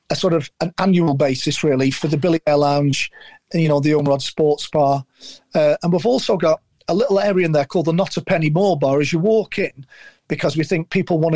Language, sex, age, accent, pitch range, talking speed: English, male, 40-59, British, 150-180 Hz, 240 wpm